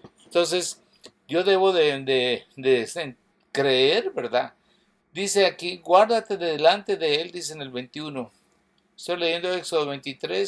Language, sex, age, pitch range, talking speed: English, male, 60-79, 135-190 Hz, 130 wpm